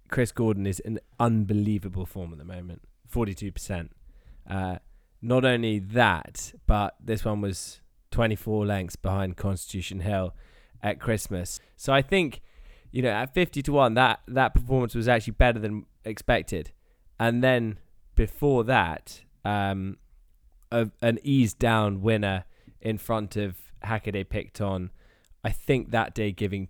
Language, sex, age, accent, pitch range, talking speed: English, male, 20-39, British, 95-115 Hz, 140 wpm